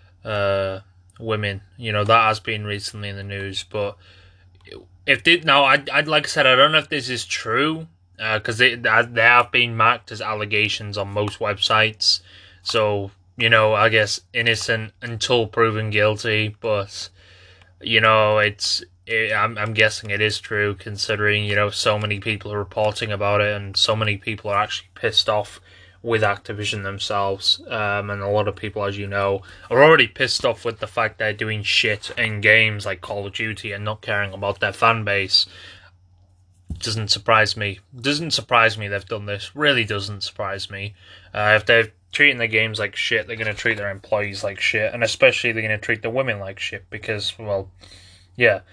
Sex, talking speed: male, 185 wpm